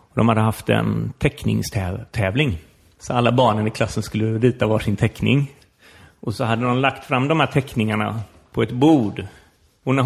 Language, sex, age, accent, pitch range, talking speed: English, male, 30-49, Swedish, 110-135 Hz, 165 wpm